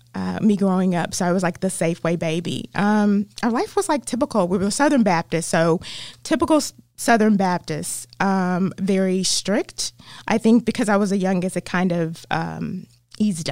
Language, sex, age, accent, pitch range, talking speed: English, female, 20-39, American, 170-215 Hz, 180 wpm